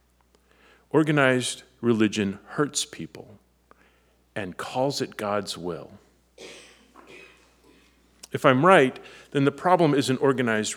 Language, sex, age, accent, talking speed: English, male, 40-59, American, 95 wpm